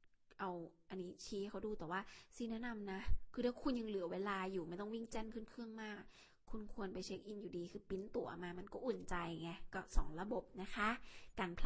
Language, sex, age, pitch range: Thai, female, 20-39, 185-225 Hz